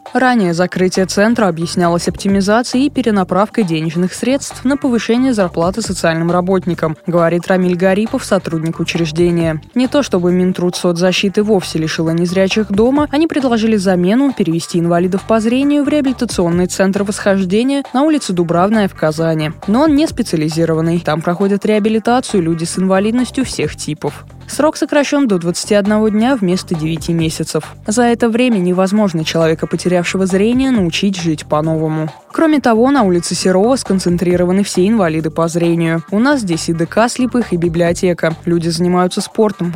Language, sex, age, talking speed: Russian, female, 20-39, 145 wpm